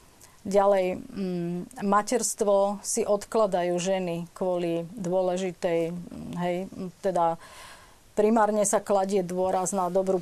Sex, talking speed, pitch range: female, 95 wpm, 175-210 Hz